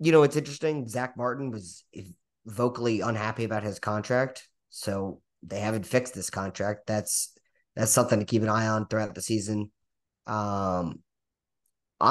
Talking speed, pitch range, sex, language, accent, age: 150 wpm, 105-125 Hz, male, English, American, 30-49